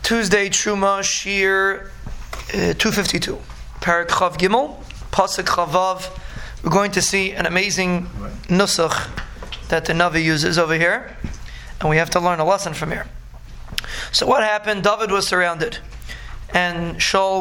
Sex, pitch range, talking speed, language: male, 175-200 Hz, 135 wpm, English